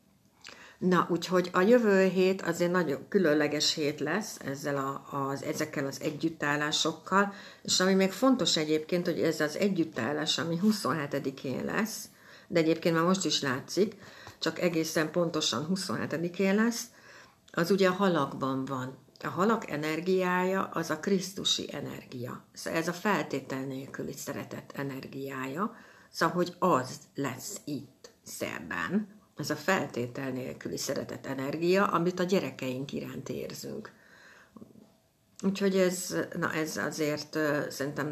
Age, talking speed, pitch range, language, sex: 60-79, 130 wpm, 145-190 Hz, Hungarian, female